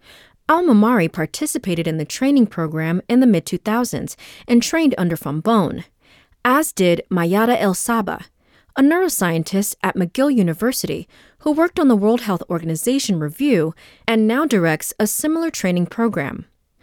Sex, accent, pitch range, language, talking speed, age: female, American, 175-255 Hz, English, 135 wpm, 30-49